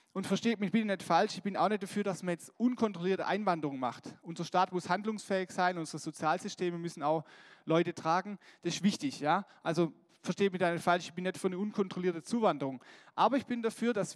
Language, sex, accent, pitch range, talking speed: German, male, German, 165-200 Hz, 210 wpm